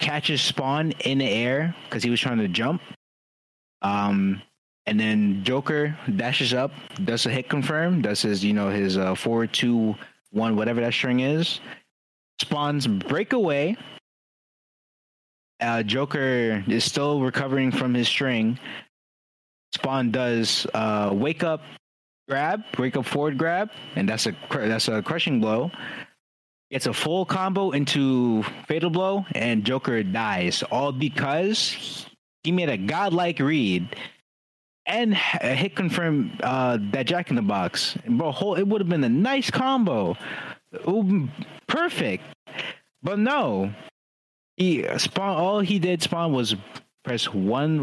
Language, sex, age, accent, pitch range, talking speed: English, male, 20-39, American, 110-165 Hz, 135 wpm